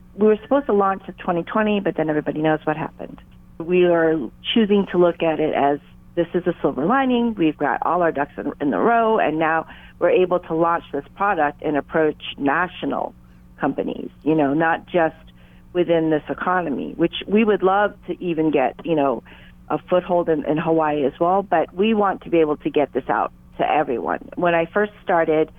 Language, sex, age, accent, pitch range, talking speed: English, female, 40-59, American, 150-185 Hz, 200 wpm